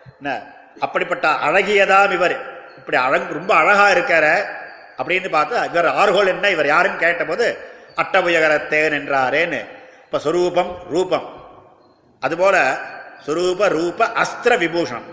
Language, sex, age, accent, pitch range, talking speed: Tamil, male, 50-69, native, 170-200 Hz, 80 wpm